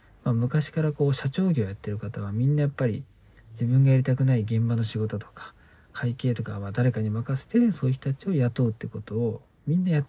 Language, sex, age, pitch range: Japanese, male, 40-59, 115-155 Hz